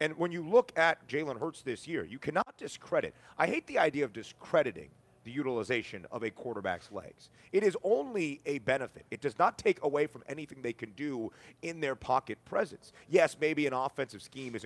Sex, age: male, 30-49